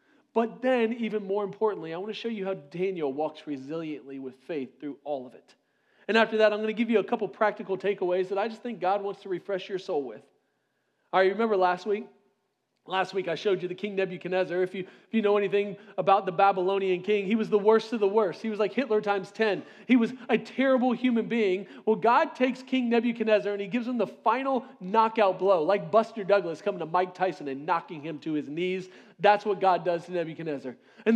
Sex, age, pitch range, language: male, 40-59, 190-230 Hz, English